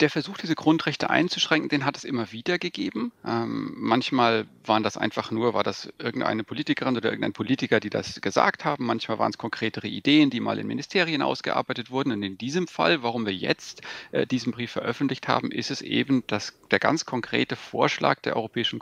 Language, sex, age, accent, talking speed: German, male, 40-59, German, 195 wpm